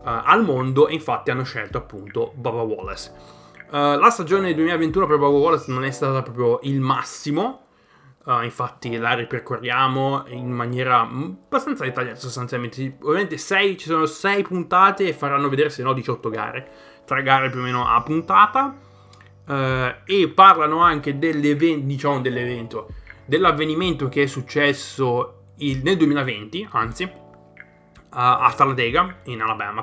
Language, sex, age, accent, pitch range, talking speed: Italian, male, 20-39, native, 115-145 Hz, 130 wpm